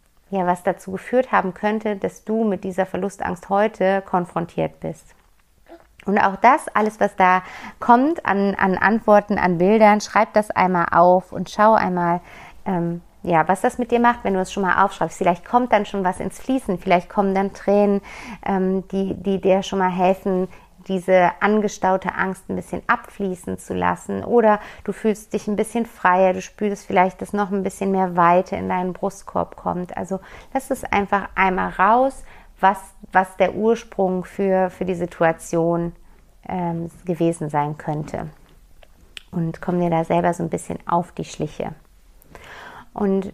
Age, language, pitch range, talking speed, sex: 50-69, German, 180-215 Hz, 170 wpm, female